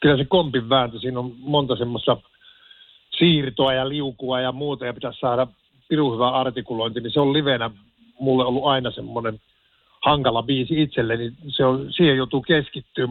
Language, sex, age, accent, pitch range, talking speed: Finnish, male, 50-69, native, 130-160 Hz, 160 wpm